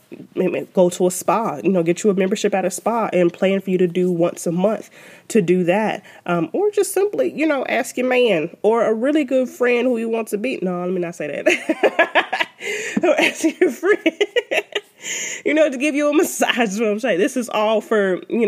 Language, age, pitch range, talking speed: English, 20-39, 180-255 Hz, 215 wpm